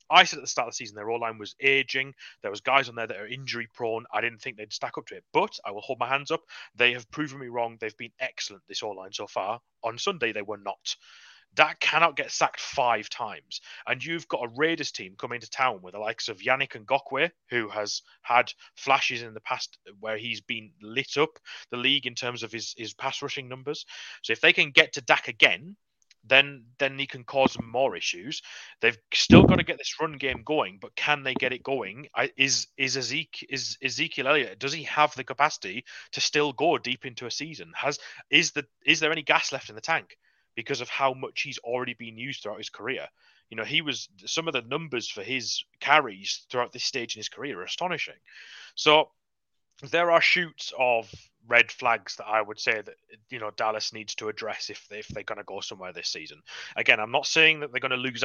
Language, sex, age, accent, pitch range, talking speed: English, male, 30-49, British, 110-140 Hz, 235 wpm